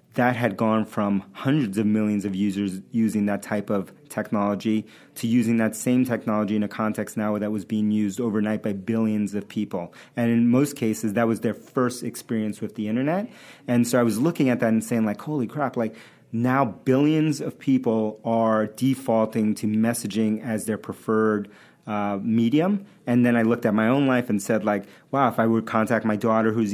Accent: American